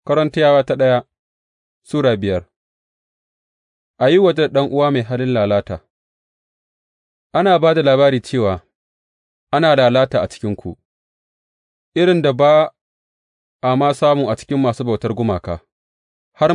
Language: English